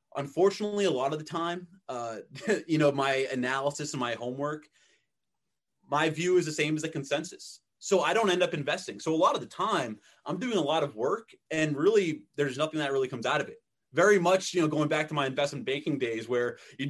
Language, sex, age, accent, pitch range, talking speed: English, male, 20-39, American, 125-165 Hz, 225 wpm